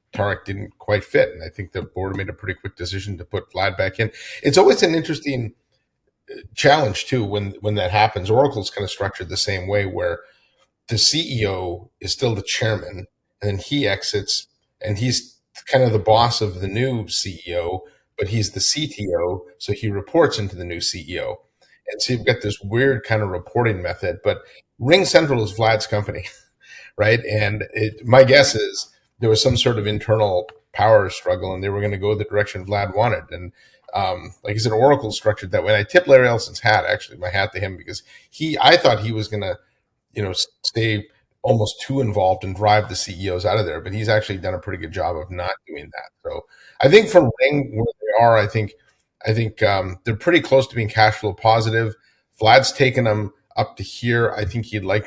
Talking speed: 205 wpm